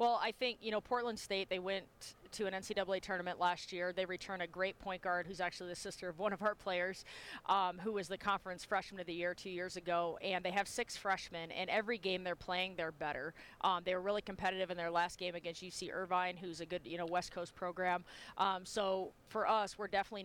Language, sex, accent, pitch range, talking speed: English, female, American, 180-200 Hz, 235 wpm